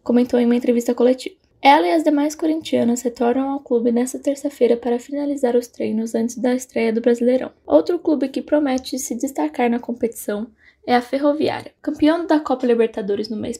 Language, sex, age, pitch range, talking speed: Portuguese, female, 10-29, 245-290 Hz, 180 wpm